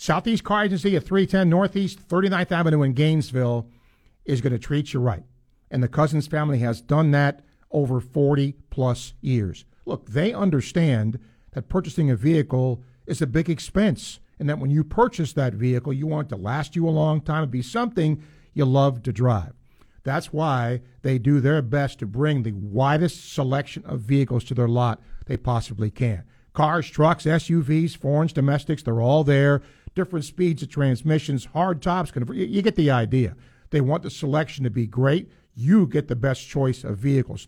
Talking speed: 180 wpm